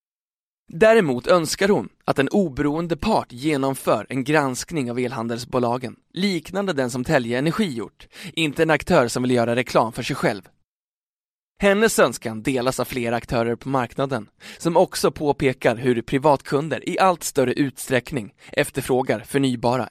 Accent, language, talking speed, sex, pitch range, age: native, Swedish, 140 wpm, male, 125-155 Hz, 20-39